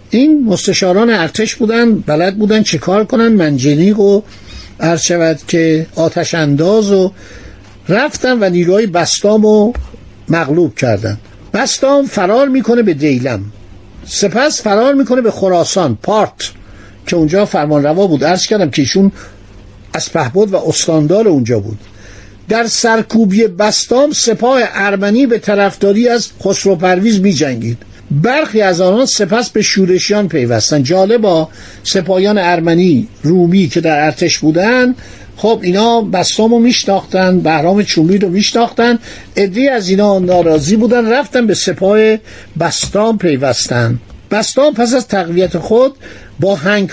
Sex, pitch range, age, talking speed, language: male, 160-220 Hz, 60-79, 125 wpm, Persian